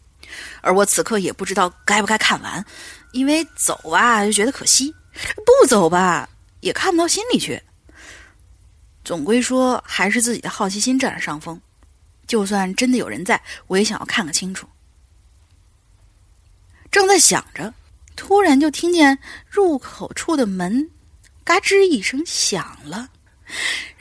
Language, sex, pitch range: Chinese, female, 185-310 Hz